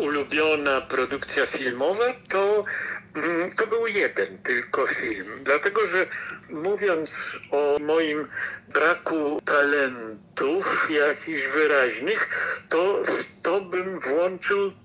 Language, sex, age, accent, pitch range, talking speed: Polish, male, 50-69, native, 155-230 Hz, 95 wpm